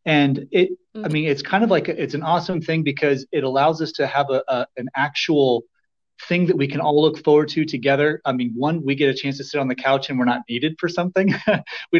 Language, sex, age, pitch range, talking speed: English, male, 30-49, 130-160 Hz, 255 wpm